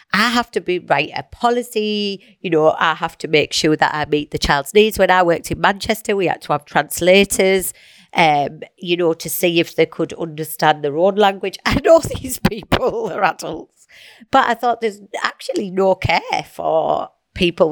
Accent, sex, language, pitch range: British, female, English, 160-210 Hz